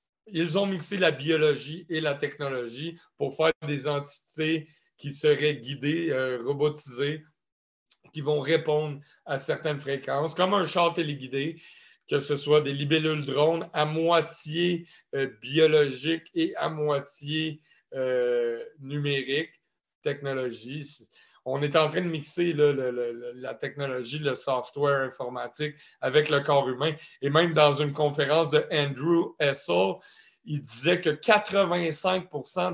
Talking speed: 135 wpm